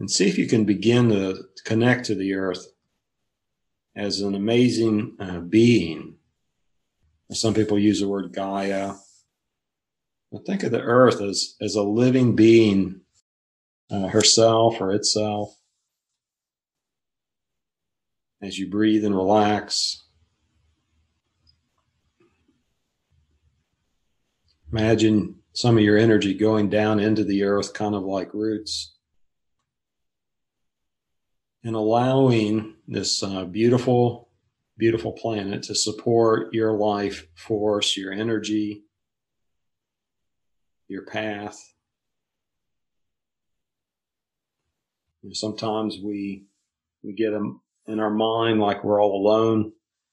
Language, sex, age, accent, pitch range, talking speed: English, male, 40-59, American, 95-110 Hz, 100 wpm